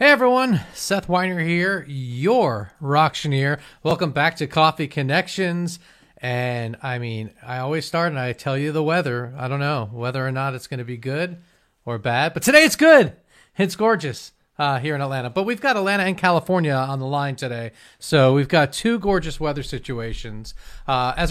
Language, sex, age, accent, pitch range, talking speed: English, male, 40-59, American, 135-185 Hz, 185 wpm